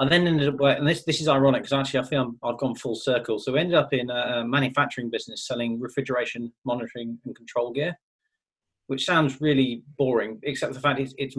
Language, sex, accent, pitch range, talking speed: English, male, British, 120-135 Hz, 215 wpm